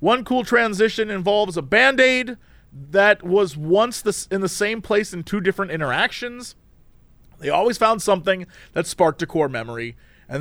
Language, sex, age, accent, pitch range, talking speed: English, male, 30-49, American, 165-225 Hz, 155 wpm